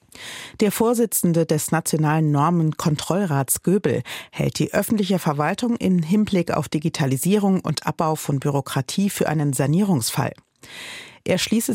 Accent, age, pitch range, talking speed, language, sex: German, 40-59, 150-195 Hz, 120 wpm, German, female